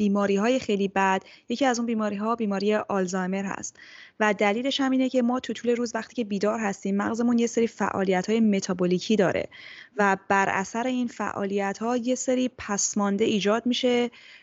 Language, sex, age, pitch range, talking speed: Persian, female, 20-39, 205-245 Hz, 160 wpm